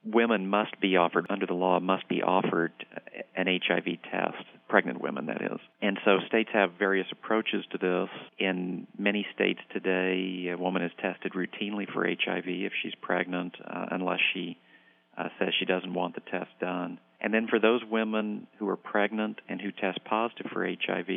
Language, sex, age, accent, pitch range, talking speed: English, male, 50-69, American, 90-100 Hz, 180 wpm